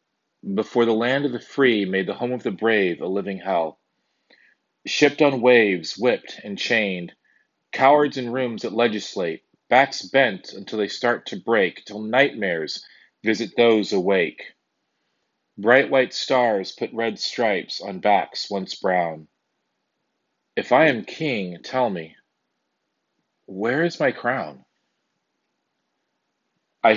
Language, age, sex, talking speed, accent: English, 40-59, male, 130 wpm, American